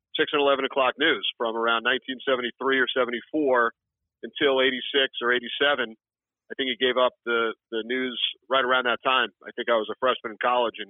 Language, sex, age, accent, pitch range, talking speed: English, male, 40-59, American, 125-145 Hz, 195 wpm